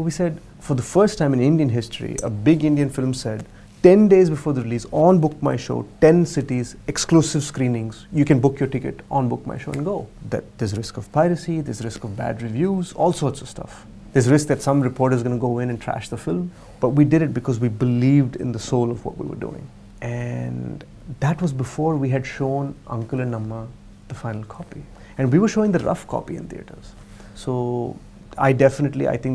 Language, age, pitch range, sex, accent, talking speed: English, 30-49, 115-145 Hz, male, Indian, 220 wpm